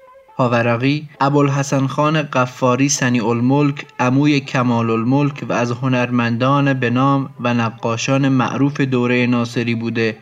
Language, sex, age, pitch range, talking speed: Persian, male, 30-49, 120-140 Hz, 115 wpm